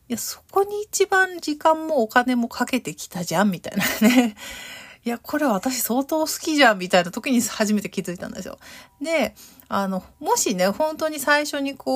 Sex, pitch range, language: female, 195-285 Hz, Japanese